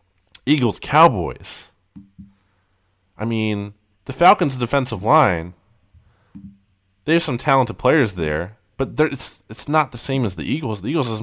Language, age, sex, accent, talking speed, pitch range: English, 20-39, male, American, 135 wpm, 95-120 Hz